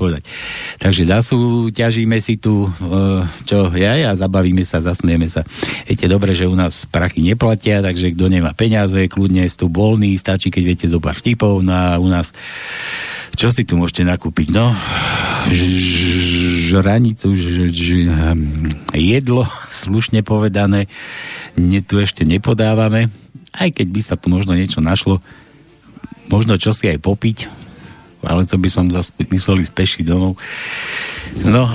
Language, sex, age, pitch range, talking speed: Slovak, male, 60-79, 90-110 Hz, 145 wpm